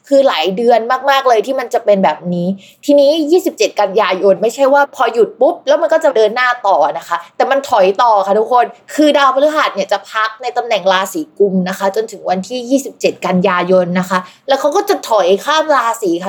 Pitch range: 195-275 Hz